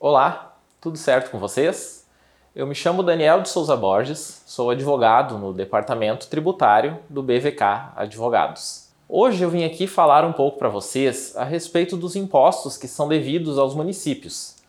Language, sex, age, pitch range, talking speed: Portuguese, male, 20-39, 125-170 Hz, 155 wpm